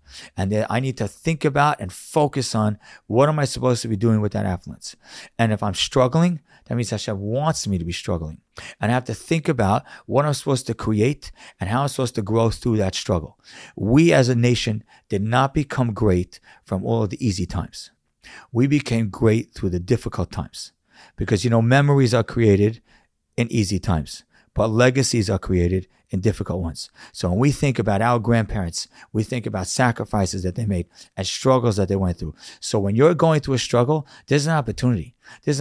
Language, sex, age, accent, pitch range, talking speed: English, male, 50-69, American, 100-135 Hz, 200 wpm